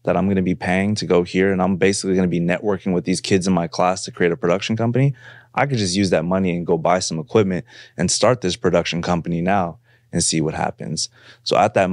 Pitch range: 85-105 Hz